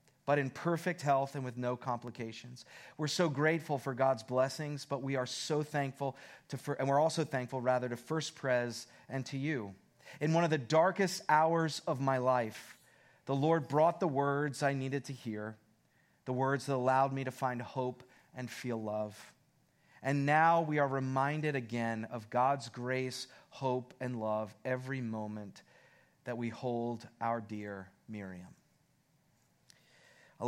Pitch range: 120-150 Hz